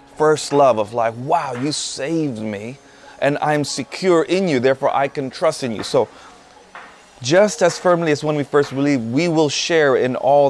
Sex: male